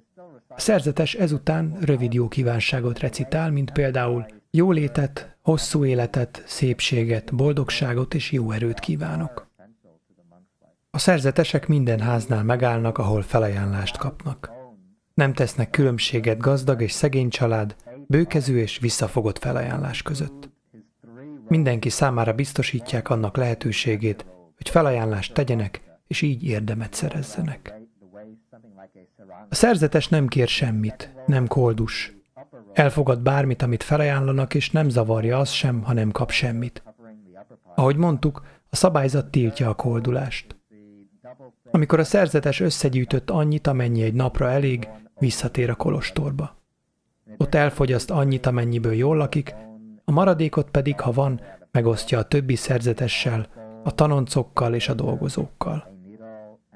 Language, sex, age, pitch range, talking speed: Hungarian, male, 30-49, 115-145 Hz, 115 wpm